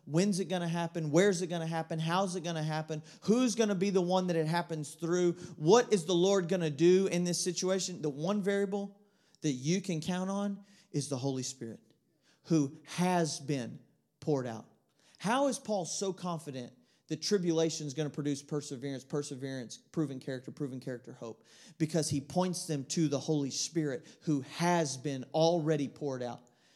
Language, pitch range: English, 160-225 Hz